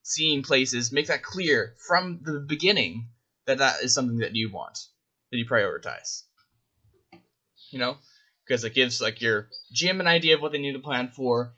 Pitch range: 125-155 Hz